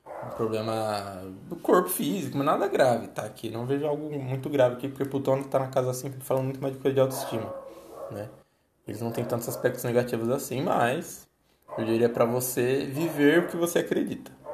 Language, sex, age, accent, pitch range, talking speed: Portuguese, male, 20-39, Brazilian, 115-140 Hz, 190 wpm